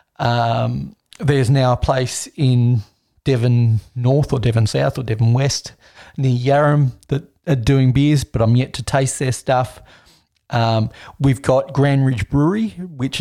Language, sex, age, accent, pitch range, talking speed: English, male, 40-59, Australian, 115-135 Hz, 155 wpm